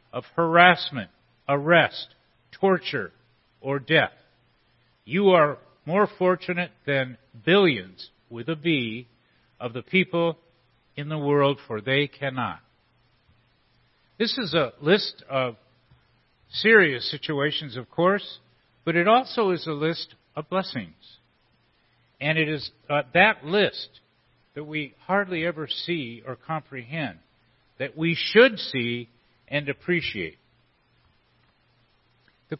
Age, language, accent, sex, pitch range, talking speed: 50-69, English, American, male, 125-175 Hz, 110 wpm